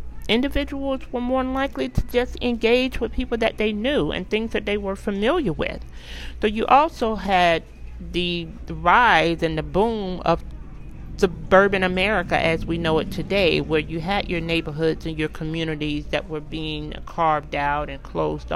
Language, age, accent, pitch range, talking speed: English, 40-59, American, 150-195 Hz, 170 wpm